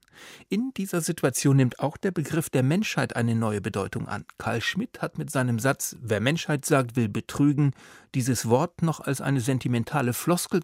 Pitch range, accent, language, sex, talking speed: 120-155 Hz, German, German, male, 175 wpm